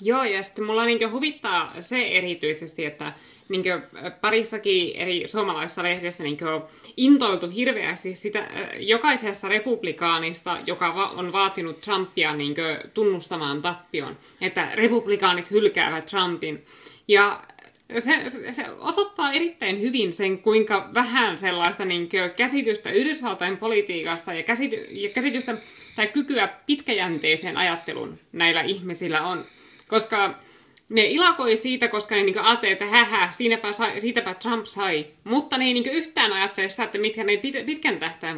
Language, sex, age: Finnish, female, 20-39